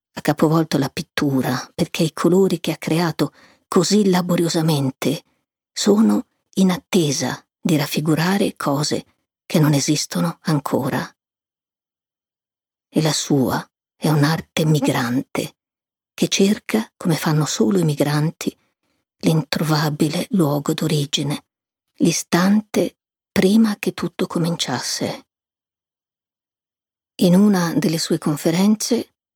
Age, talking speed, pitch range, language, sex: 50-69, 100 wpm, 150-205 Hz, Italian, female